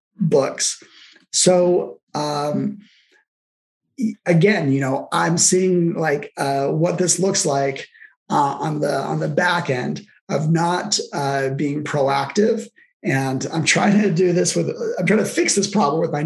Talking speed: 150 wpm